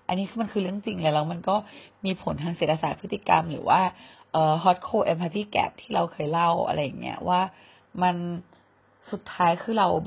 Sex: female